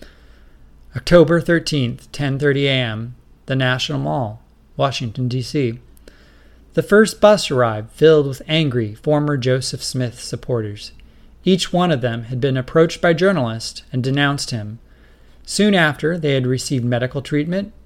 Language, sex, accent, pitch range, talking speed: English, male, American, 120-150 Hz, 130 wpm